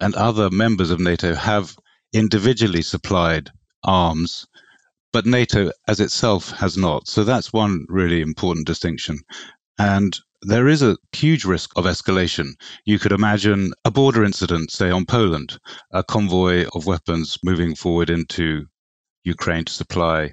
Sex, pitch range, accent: male, 90-115 Hz, British